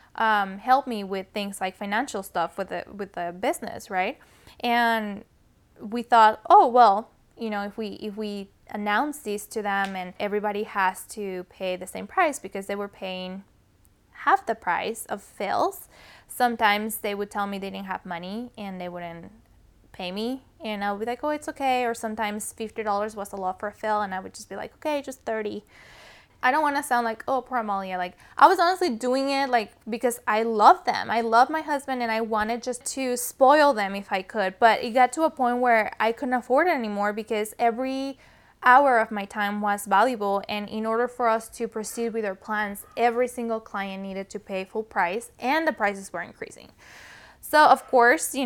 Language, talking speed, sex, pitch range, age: English, 205 wpm, female, 200-245 Hz, 10-29